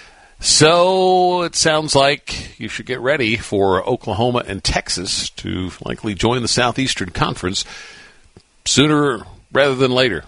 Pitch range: 85-115 Hz